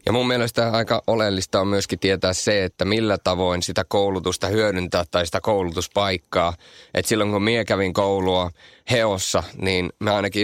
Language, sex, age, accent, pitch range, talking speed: Finnish, male, 30-49, native, 90-110 Hz, 160 wpm